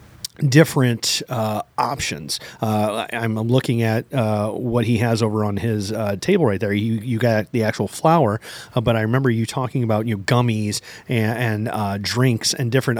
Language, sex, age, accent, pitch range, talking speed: English, male, 30-49, American, 110-135 Hz, 185 wpm